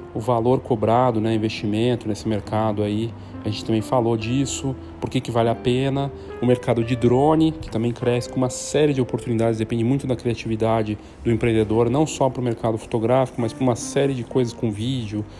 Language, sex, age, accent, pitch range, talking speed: Portuguese, male, 40-59, Brazilian, 110-130 Hz, 195 wpm